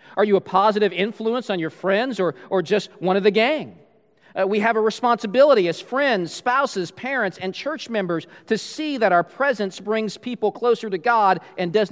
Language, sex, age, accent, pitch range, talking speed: English, male, 40-59, American, 155-210 Hz, 195 wpm